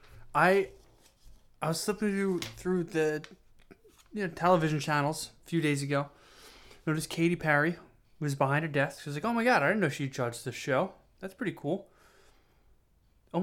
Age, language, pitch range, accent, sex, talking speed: 20-39, English, 120-150 Hz, American, male, 180 wpm